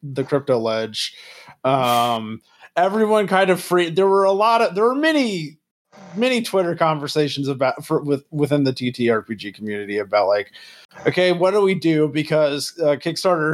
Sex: male